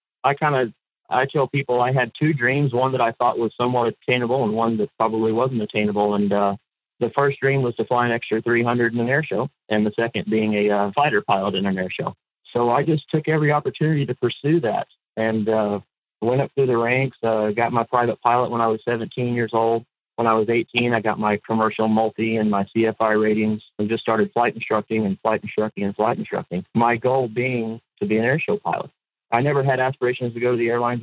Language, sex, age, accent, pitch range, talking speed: English, male, 40-59, American, 110-130 Hz, 230 wpm